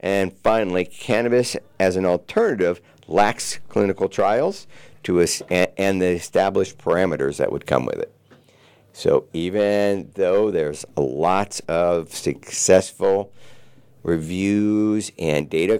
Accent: American